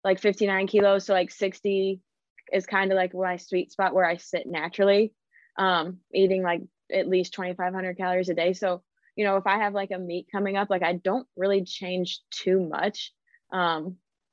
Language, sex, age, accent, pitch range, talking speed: English, female, 20-39, American, 180-195 Hz, 200 wpm